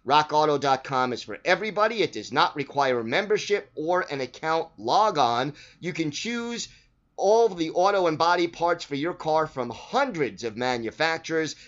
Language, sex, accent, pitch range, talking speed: English, male, American, 130-170 Hz, 155 wpm